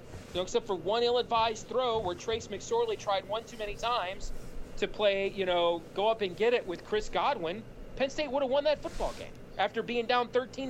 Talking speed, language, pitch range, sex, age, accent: 210 wpm, English, 185-245 Hz, male, 40-59, American